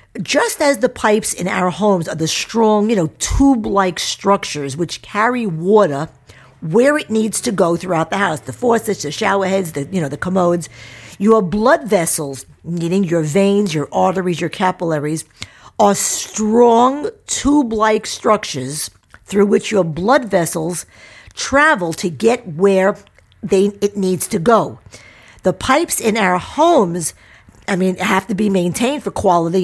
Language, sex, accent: English, female, American